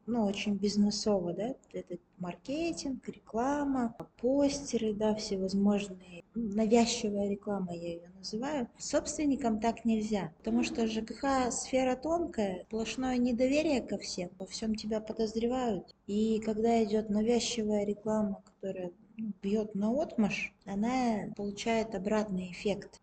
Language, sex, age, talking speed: Russian, female, 20-39, 115 wpm